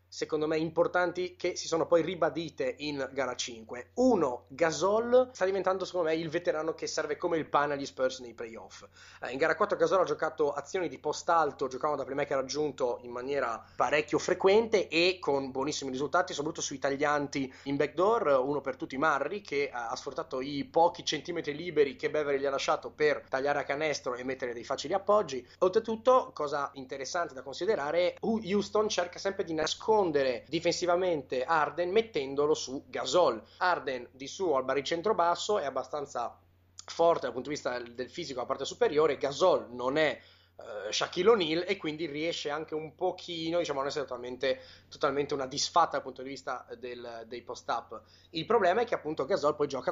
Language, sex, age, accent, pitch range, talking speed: Italian, male, 30-49, native, 135-180 Hz, 175 wpm